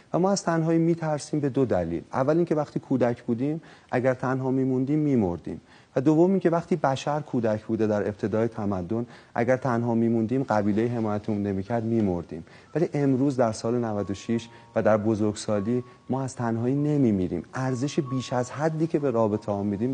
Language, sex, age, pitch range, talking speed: Persian, male, 30-49, 110-145 Hz, 165 wpm